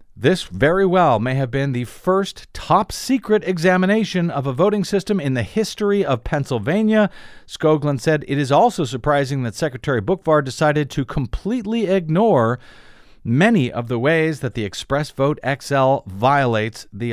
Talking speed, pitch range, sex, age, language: 150 wpm, 130-185 Hz, male, 50-69, English